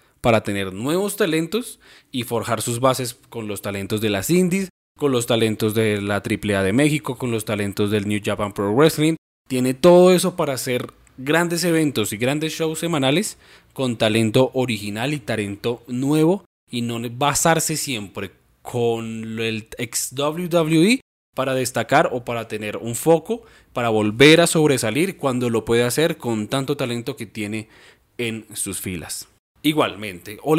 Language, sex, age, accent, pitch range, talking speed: Spanish, male, 20-39, Colombian, 110-140 Hz, 155 wpm